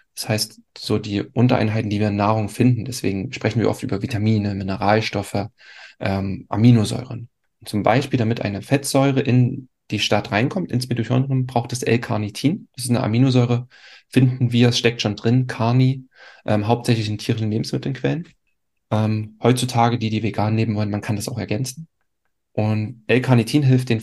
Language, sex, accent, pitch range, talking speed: German, male, German, 105-125 Hz, 160 wpm